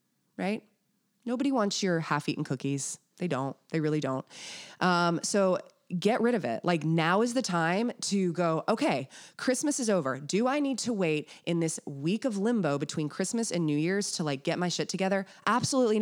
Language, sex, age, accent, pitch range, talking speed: English, female, 20-39, American, 150-195 Hz, 190 wpm